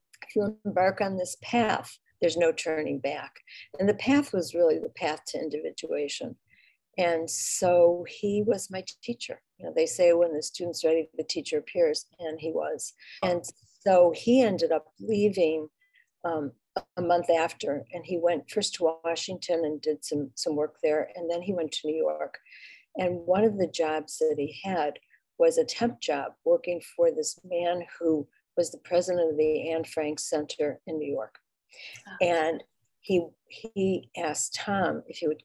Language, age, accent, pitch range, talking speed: English, 50-69, American, 160-225 Hz, 175 wpm